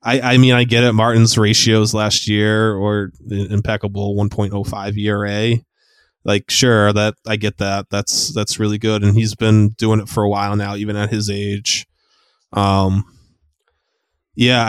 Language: English